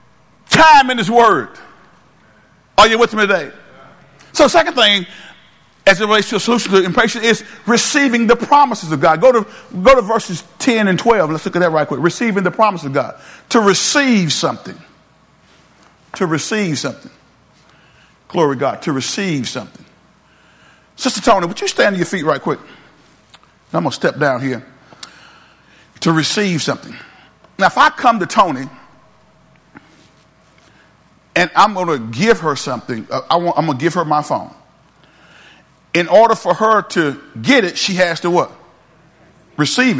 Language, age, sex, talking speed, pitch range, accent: English, 50-69, male, 165 wpm, 175-235 Hz, American